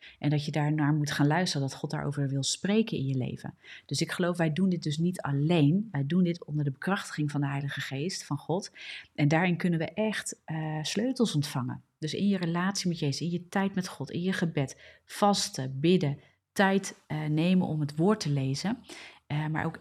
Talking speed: 220 wpm